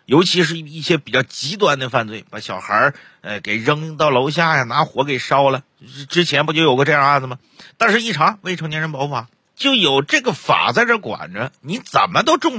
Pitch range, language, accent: 140-195 Hz, Chinese, native